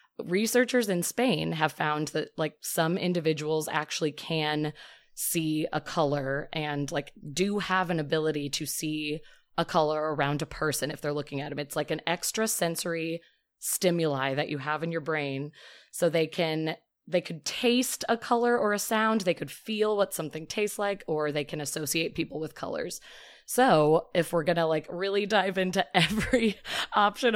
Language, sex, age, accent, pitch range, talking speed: English, female, 20-39, American, 150-185 Hz, 175 wpm